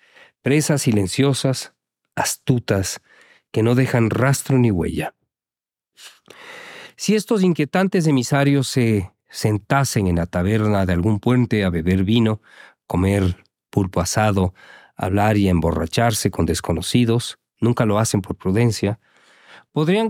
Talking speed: 115 wpm